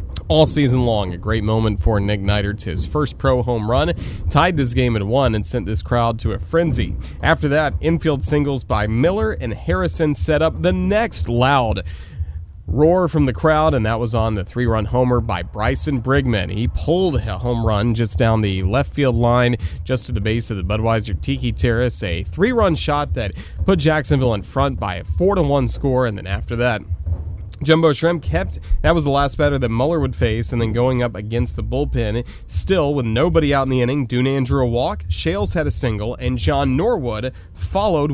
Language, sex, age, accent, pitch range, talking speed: English, male, 30-49, American, 95-135 Hz, 200 wpm